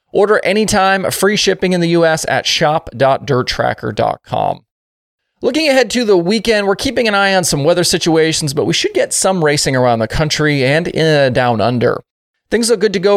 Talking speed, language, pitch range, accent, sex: 180 wpm, English, 130-180 Hz, American, male